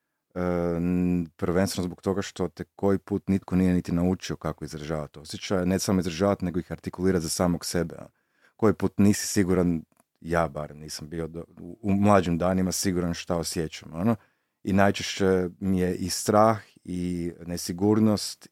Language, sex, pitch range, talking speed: Croatian, male, 85-100 Hz, 150 wpm